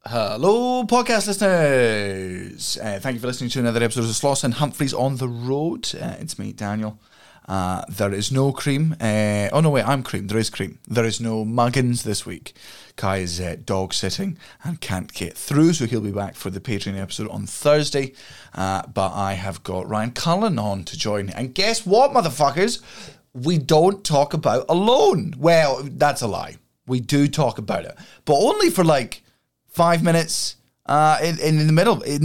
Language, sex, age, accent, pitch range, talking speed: English, male, 30-49, British, 100-150 Hz, 190 wpm